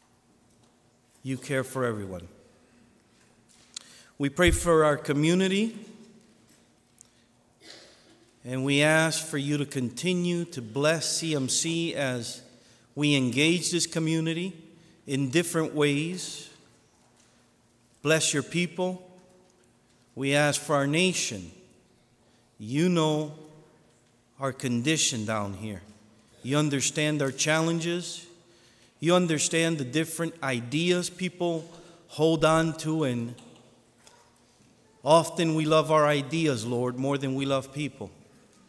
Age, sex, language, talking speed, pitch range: 50-69, male, English, 100 wpm, 120-165 Hz